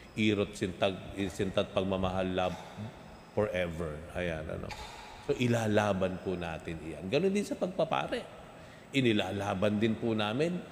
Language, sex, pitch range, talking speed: Filipino, male, 90-120 Hz, 110 wpm